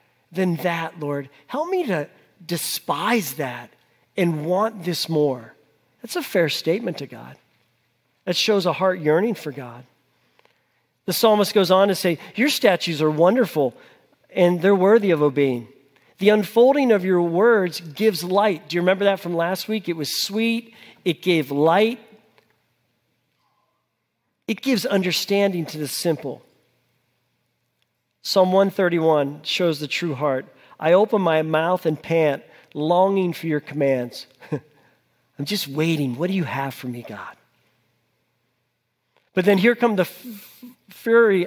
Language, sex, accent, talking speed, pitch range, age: English, male, American, 140 wpm, 155-210 Hz, 40-59